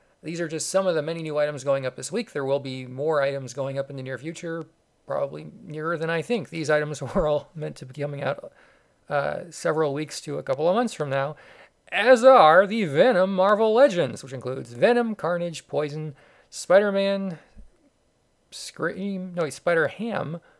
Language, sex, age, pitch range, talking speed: English, male, 40-59, 145-190 Hz, 185 wpm